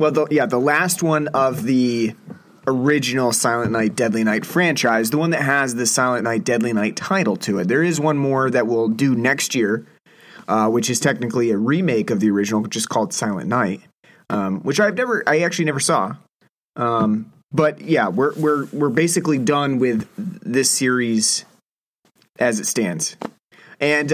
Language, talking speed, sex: English, 175 wpm, male